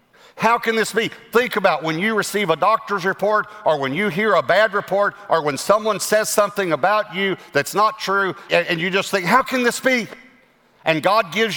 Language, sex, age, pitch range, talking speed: English, male, 50-69, 140-205 Hz, 205 wpm